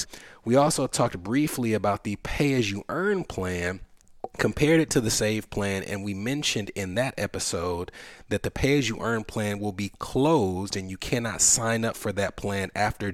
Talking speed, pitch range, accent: 190 wpm, 100-125 Hz, American